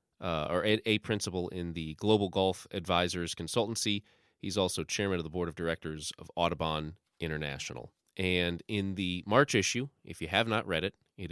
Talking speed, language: 180 wpm, English